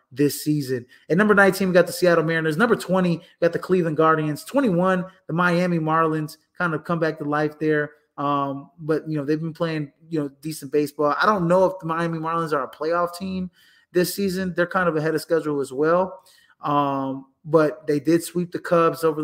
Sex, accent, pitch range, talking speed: male, American, 145-165 Hz, 210 wpm